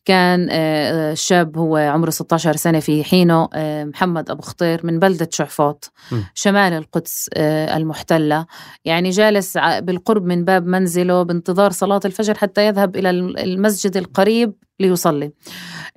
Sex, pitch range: female, 155-185 Hz